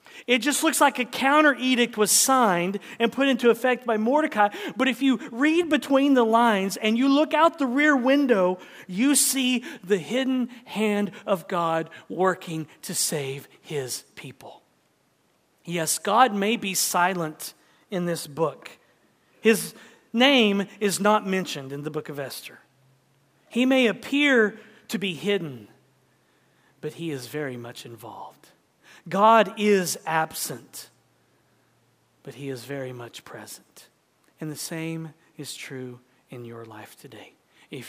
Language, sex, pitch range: English, male, 145-225 Hz